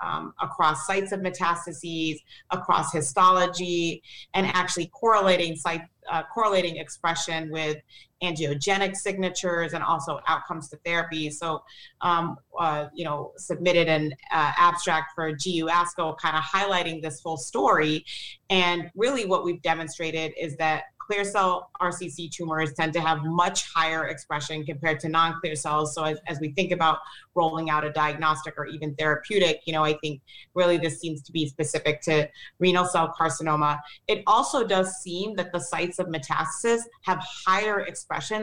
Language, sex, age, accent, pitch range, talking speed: English, female, 30-49, American, 155-180 Hz, 155 wpm